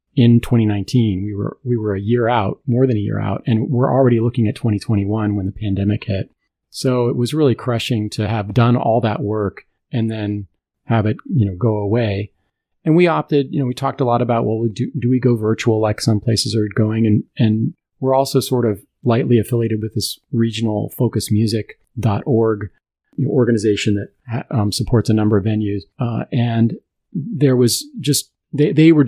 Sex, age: male, 40-59